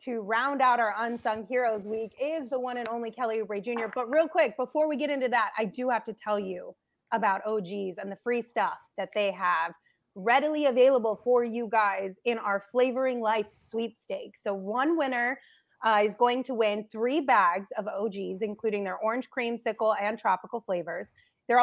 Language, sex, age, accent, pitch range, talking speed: English, female, 30-49, American, 205-245 Hz, 190 wpm